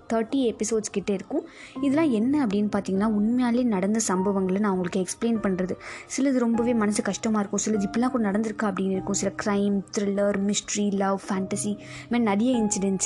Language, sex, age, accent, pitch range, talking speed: Tamil, female, 20-39, native, 195-235 Hz, 155 wpm